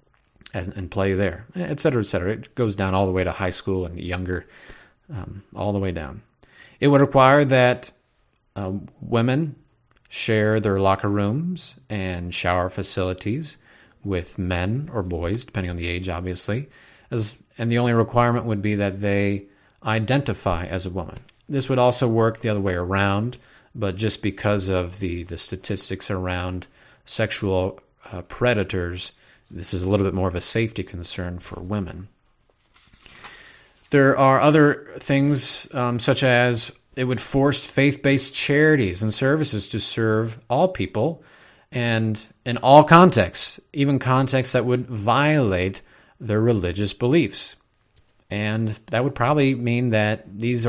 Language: English